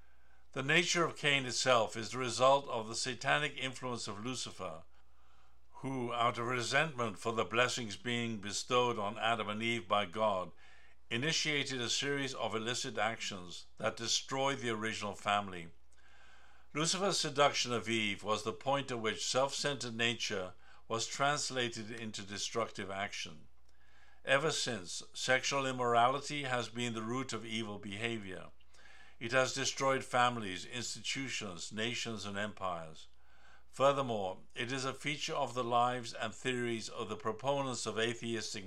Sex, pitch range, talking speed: male, 105-130 Hz, 140 wpm